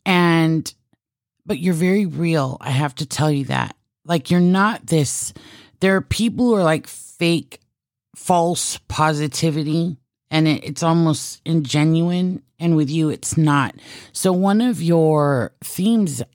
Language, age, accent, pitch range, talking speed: English, 30-49, American, 135-165 Hz, 140 wpm